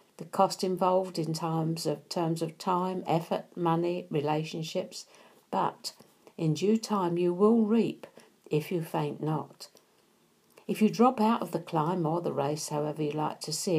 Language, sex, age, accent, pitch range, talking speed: English, female, 50-69, British, 165-210 Hz, 160 wpm